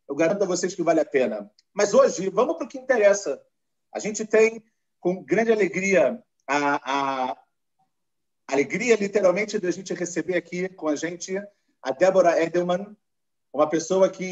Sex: male